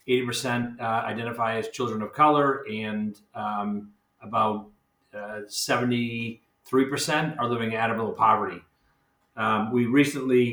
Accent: American